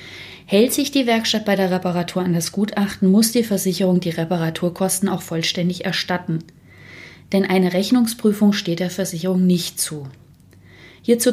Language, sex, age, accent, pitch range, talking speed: German, female, 30-49, German, 175-210 Hz, 145 wpm